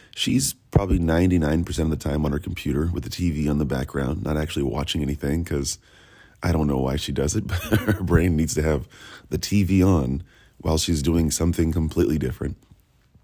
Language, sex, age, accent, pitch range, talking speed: English, male, 40-59, American, 75-95 Hz, 190 wpm